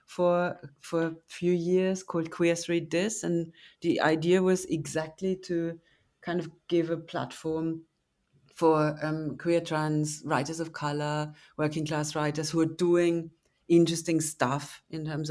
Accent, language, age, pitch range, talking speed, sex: German, English, 30-49, 155-180 Hz, 145 wpm, female